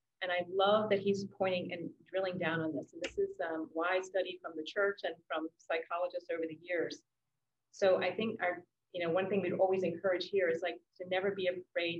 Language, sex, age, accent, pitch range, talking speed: English, female, 30-49, American, 160-190 Hz, 225 wpm